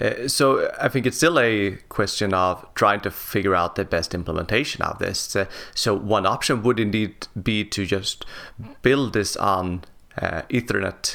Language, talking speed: English, 170 wpm